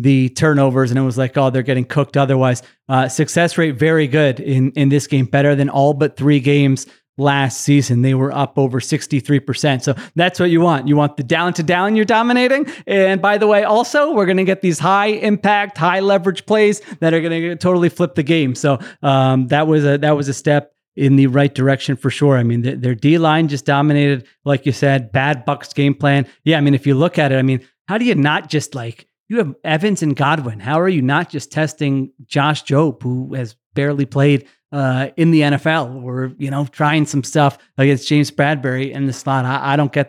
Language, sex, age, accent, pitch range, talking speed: English, male, 30-49, American, 135-155 Hz, 225 wpm